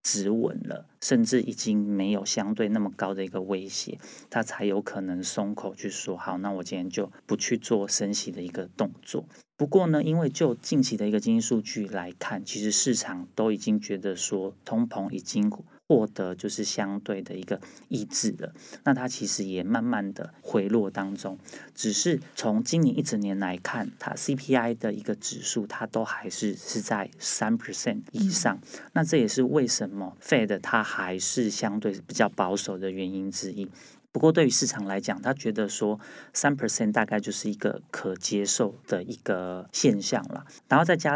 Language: Chinese